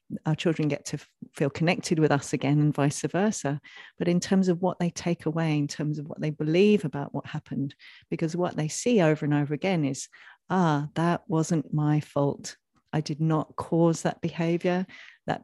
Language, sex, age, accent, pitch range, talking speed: English, female, 40-59, British, 155-205 Hz, 195 wpm